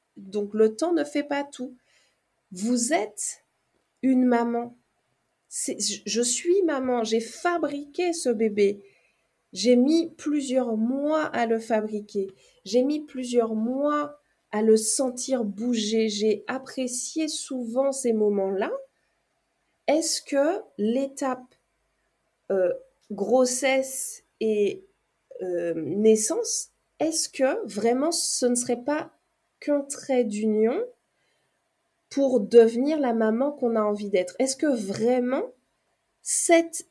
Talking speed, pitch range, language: 115 wpm, 220-295 Hz, French